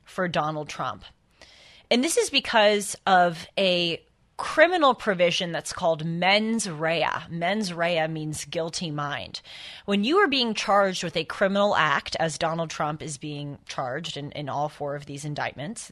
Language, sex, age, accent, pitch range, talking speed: English, female, 30-49, American, 165-215 Hz, 160 wpm